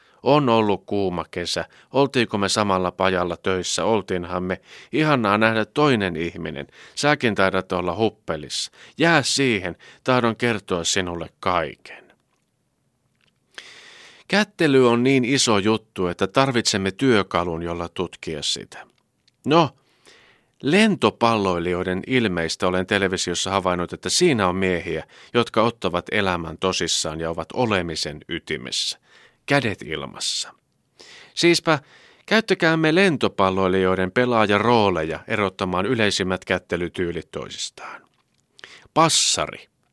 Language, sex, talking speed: Finnish, male, 100 wpm